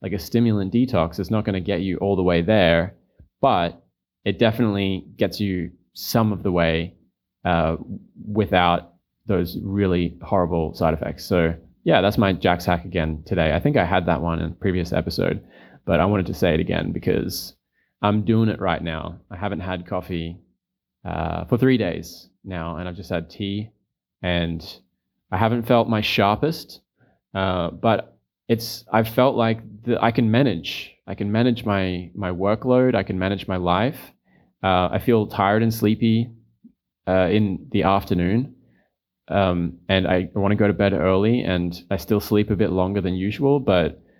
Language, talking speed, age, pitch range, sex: English, 180 wpm, 20-39, 90-110 Hz, male